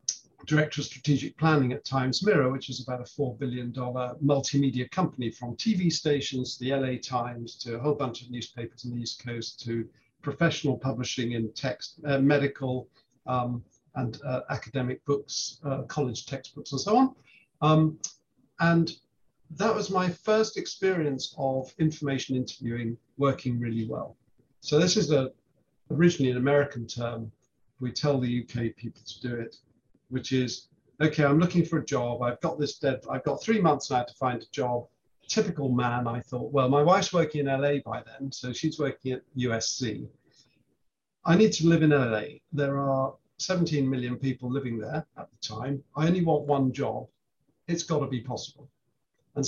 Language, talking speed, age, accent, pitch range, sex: English, 170 wpm, 50-69, British, 125-150 Hz, male